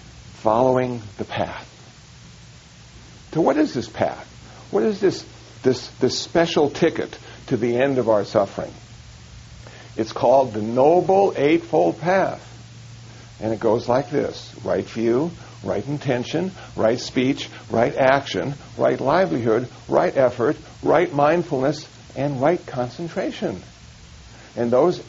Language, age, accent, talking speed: English, 60-79, American, 120 wpm